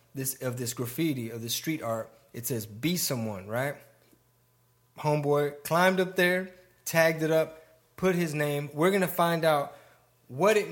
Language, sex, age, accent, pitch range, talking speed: English, male, 20-39, American, 125-160 Hz, 160 wpm